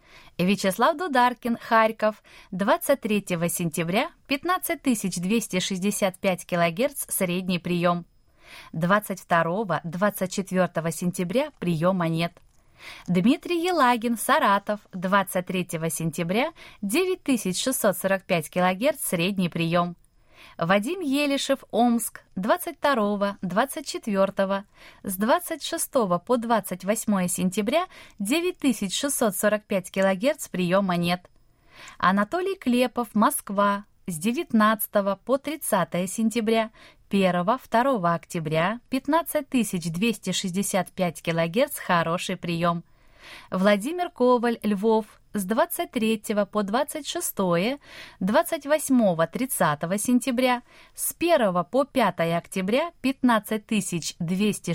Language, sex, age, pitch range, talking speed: Russian, female, 20-39, 180-255 Hz, 75 wpm